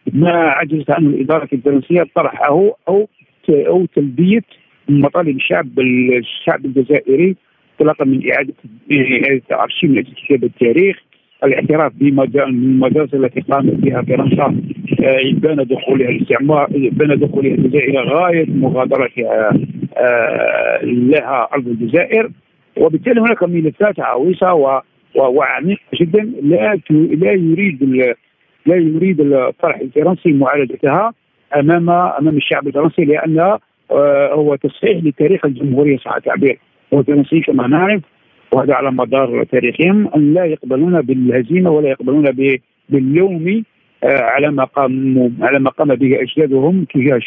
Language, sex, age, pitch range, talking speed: Arabic, male, 50-69, 135-170 Hz, 105 wpm